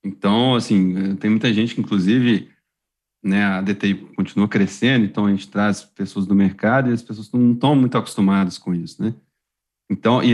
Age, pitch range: 40-59, 105-135 Hz